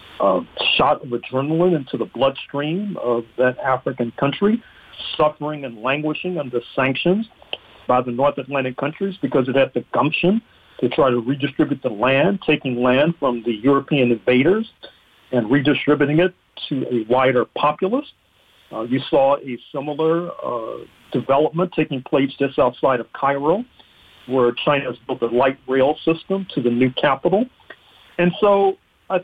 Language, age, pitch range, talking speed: English, 40-59, 130-190 Hz, 150 wpm